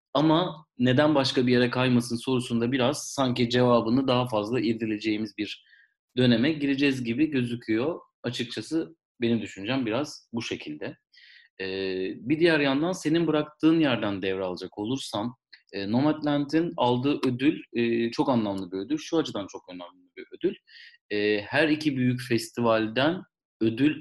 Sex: male